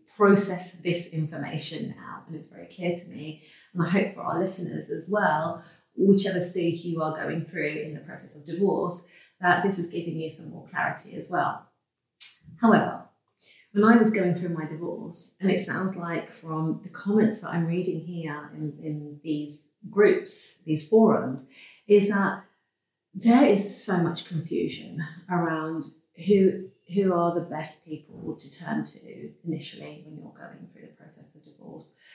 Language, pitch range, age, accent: English, 160-200 Hz, 30-49, British